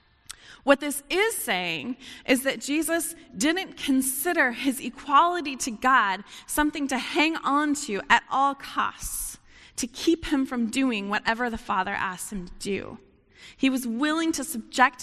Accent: American